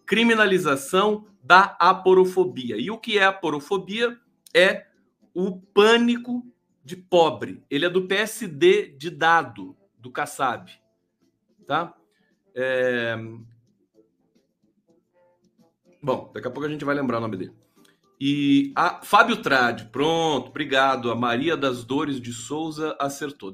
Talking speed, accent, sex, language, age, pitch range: 120 wpm, Brazilian, male, Portuguese, 40-59, 135-210 Hz